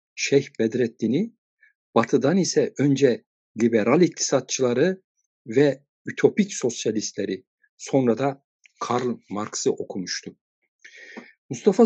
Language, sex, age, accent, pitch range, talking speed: Turkish, male, 60-79, native, 120-190 Hz, 80 wpm